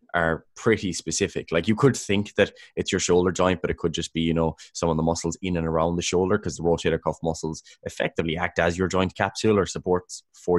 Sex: male